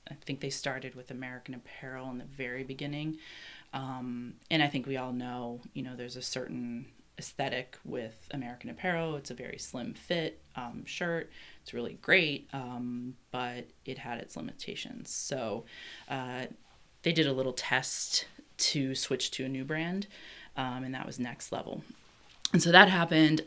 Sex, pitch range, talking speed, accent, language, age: female, 130-155 Hz, 170 wpm, American, English, 30-49